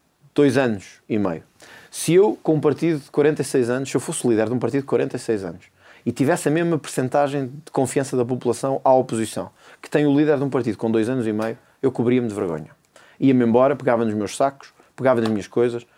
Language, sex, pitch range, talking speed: Portuguese, male, 130-200 Hz, 225 wpm